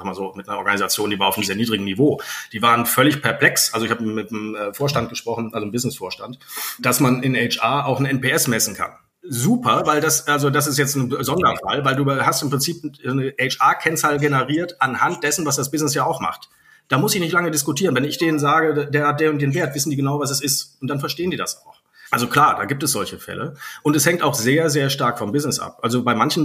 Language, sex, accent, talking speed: German, male, German, 245 wpm